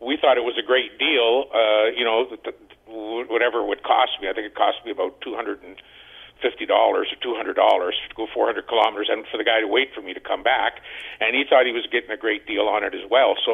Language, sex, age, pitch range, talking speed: English, male, 50-69, 115-140 Hz, 240 wpm